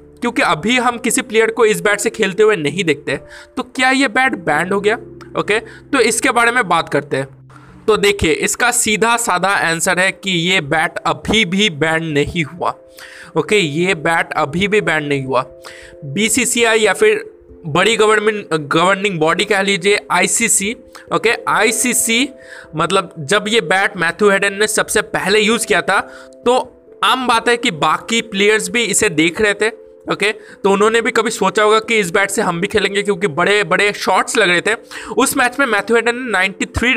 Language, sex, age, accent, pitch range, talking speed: Hindi, male, 20-39, native, 175-225 Hz, 190 wpm